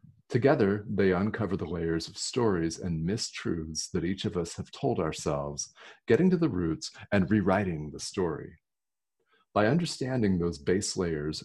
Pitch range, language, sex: 80-100 Hz, English, male